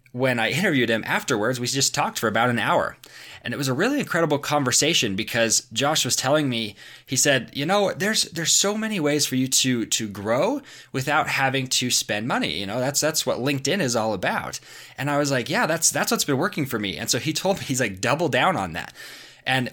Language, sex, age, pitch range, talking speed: English, male, 20-39, 115-150 Hz, 230 wpm